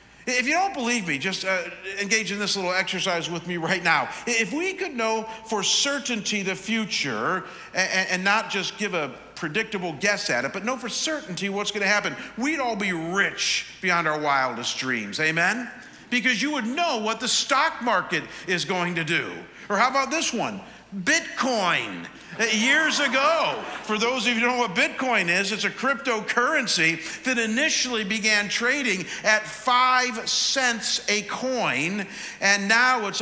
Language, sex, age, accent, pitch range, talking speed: English, male, 50-69, American, 190-245 Hz, 175 wpm